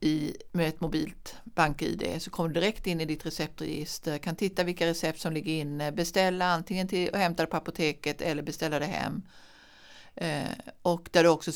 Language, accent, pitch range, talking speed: Swedish, native, 160-215 Hz, 190 wpm